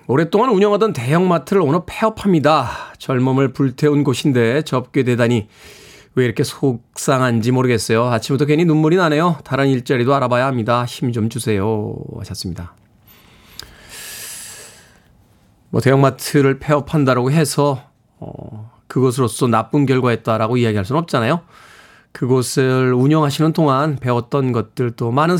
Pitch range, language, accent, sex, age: 120-155 Hz, Korean, native, male, 20-39